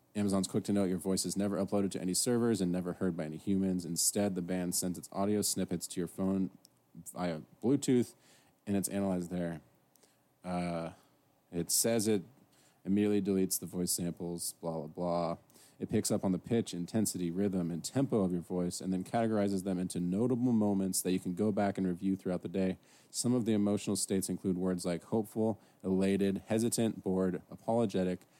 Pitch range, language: 90-105 Hz, English